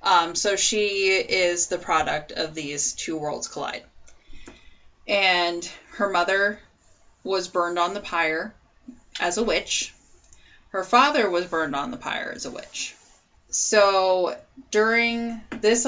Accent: American